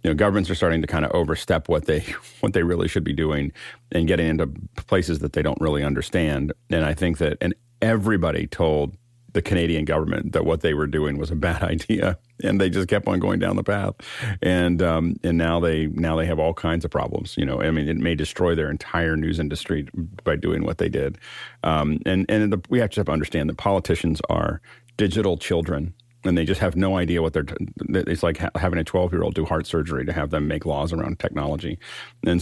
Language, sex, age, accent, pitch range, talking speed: English, male, 40-59, American, 80-95 Hz, 225 wpm